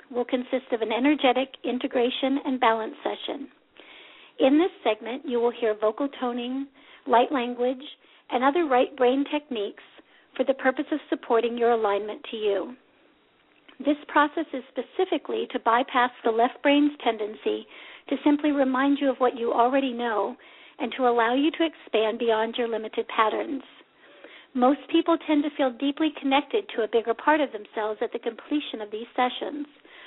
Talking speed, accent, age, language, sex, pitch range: 160 wpm, American, 50-69, English, female, 230-295 Hz